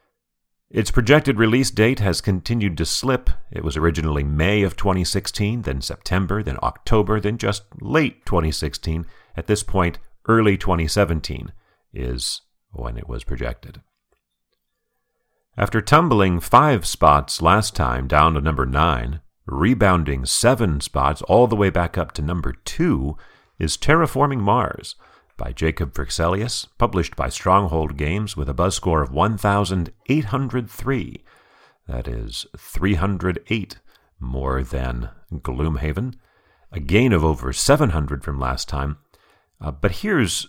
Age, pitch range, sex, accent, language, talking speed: 40-59, 75-105 Hz, male, American, English, 125 wpm